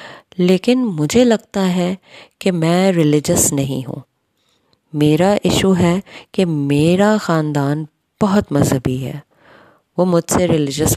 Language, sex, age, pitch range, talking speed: Urdu, female, 20-39, 155-200 Hz, 120 wpm